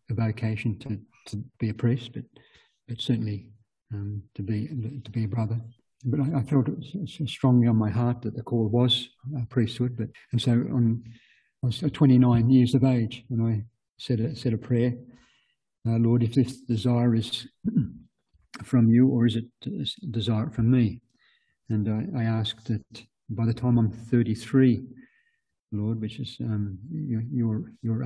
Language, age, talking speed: English, 50-69, 175 wpm